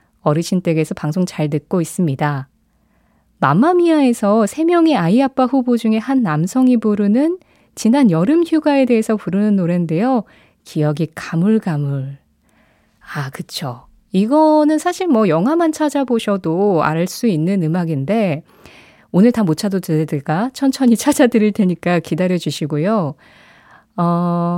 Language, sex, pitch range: Korean, female, 165-245 Hz